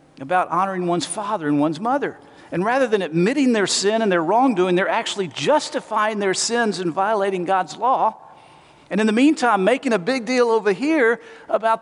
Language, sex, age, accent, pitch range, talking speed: English, male, 50-69, American, 155-215 Hz, 185 wpm